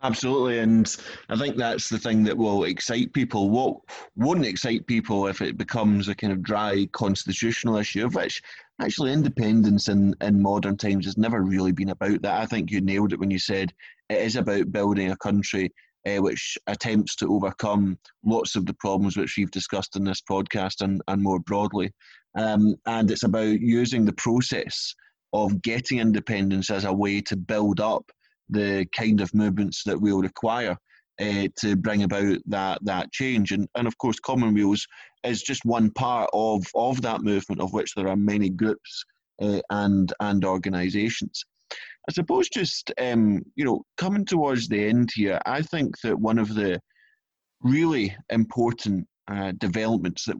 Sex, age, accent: male, 30-49, British